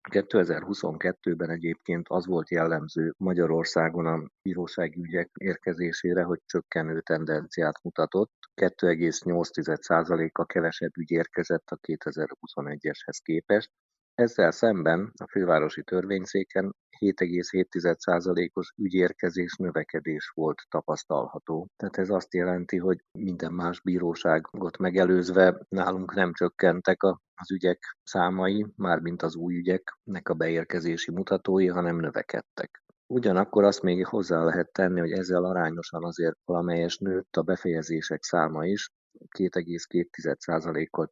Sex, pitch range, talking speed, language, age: male, 85-95 Hz, 105 wpm, Hungarian, 50-69